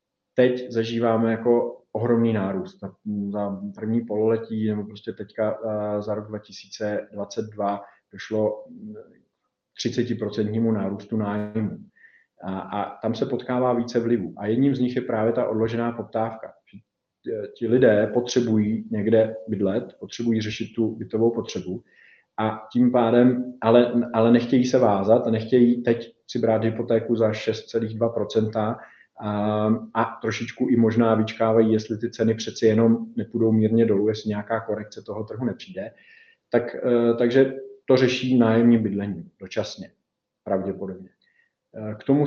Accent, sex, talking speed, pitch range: native, male, 130 wpm, 110-120 Hz